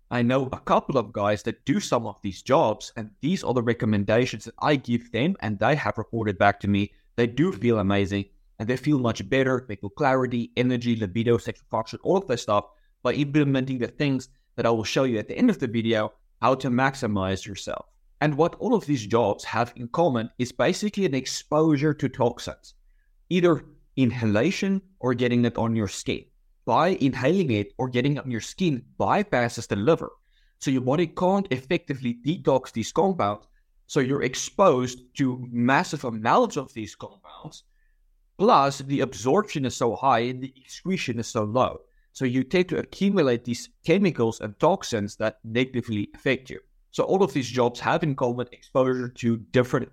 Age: 30-49